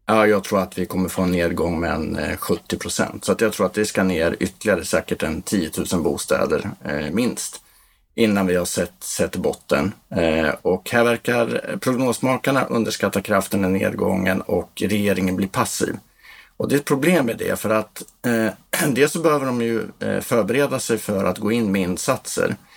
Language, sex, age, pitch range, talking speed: Swedish, male, 50-69, 95-115 Hz, 185 wpm